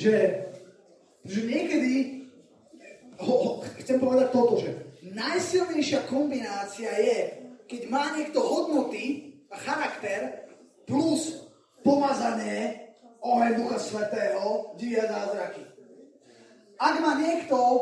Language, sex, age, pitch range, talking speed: Slovak, male, 20-39, 230-290 Hz, 90 wpm